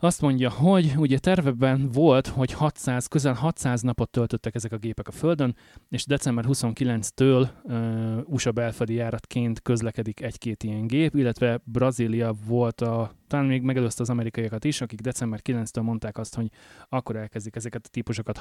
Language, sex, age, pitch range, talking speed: Hungarian, male, 20-39, 115-130 Hz, 155 wpm